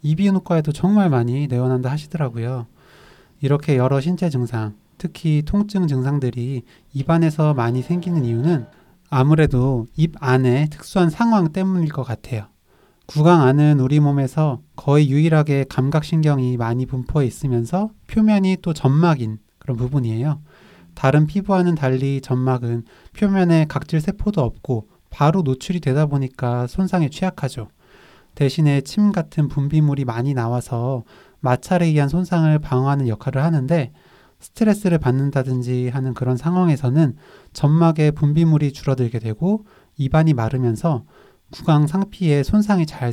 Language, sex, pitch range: Korean, male, 125-165 Hz